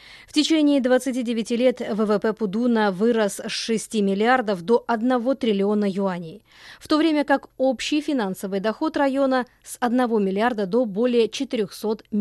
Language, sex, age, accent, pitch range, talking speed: Russian, female, 20-39, native, 205-270 Hz, 140 wpm